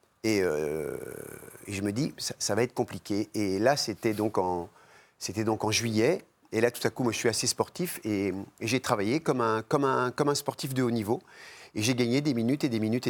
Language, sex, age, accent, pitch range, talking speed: French, male, 40-59, French, 110-145 Hz, 240 wpm